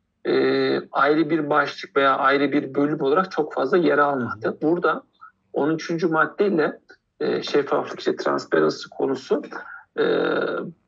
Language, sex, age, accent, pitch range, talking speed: Turkish, male, 50-69, native, 135-190 Hz, 120 wpm